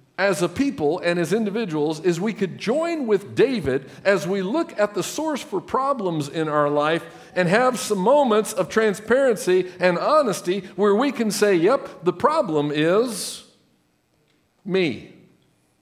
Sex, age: male, 50-69